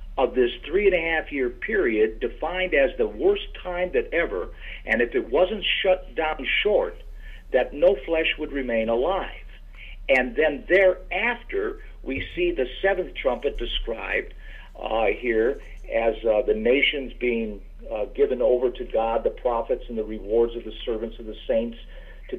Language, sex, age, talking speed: English, male, 50-69, 155 wpm